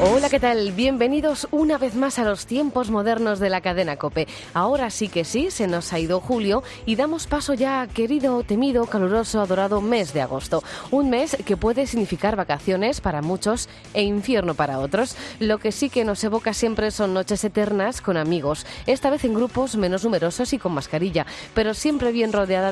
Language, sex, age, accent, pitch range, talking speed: Spanish, female, 20-39, Spanish, 170-235 Hz, 195 wpm